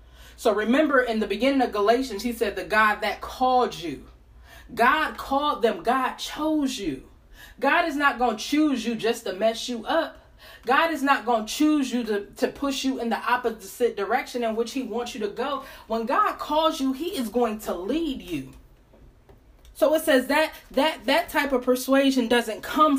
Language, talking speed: English, 195 wpm